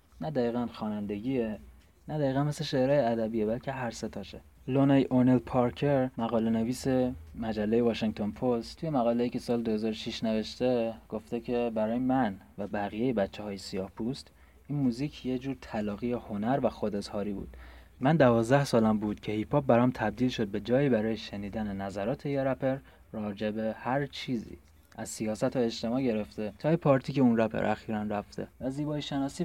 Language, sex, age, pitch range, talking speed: English, male, 30-49, 105-130 Hz, 160 wpm